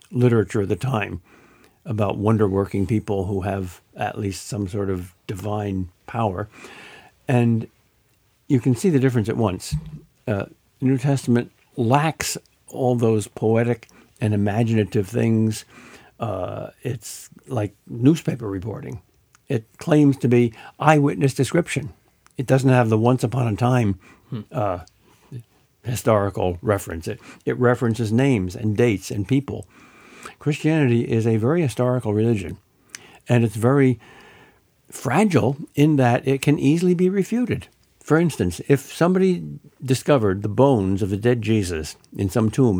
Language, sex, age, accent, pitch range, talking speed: English, male, 60-79, American, 100-130 Hz, 135 wpm